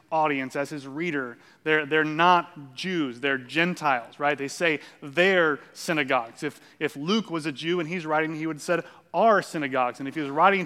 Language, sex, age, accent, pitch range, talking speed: English, male, 30-49, American, 155-185 Hz, 195 wpm